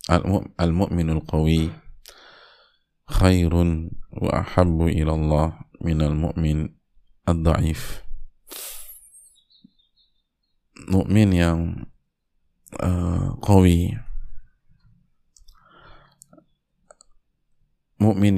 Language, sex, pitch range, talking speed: Indonesian, male, 80-90 Hz, 55 wpm